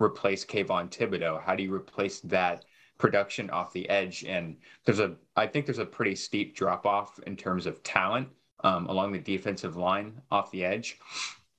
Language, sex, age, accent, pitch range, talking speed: English, male, 20-39, American, 90-100 Hz, 180 wpm